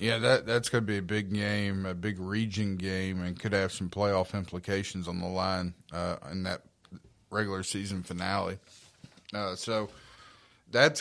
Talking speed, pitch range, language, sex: 170 wpm, 95-110 Hz, English, male